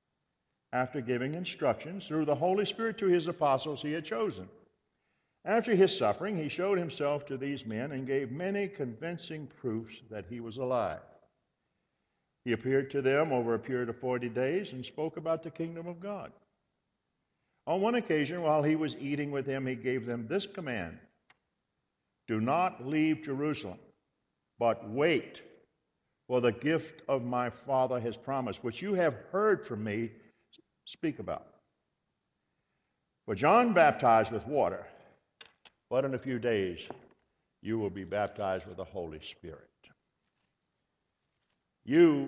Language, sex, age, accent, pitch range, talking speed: English, male, 60-79, American, 115-160 Hz, 145 wpm